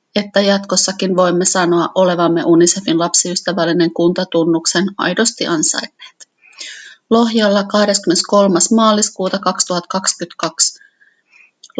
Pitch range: 185-210 Hz